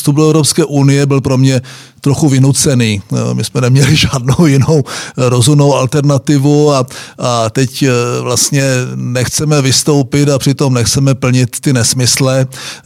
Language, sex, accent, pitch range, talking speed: Czech, male, native, 130-150 Hz, 130 wpm